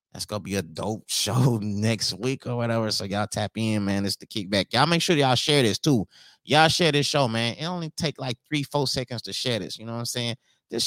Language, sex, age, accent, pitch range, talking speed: English, male, 30-49, American, 105-130 Hz, 260 wpm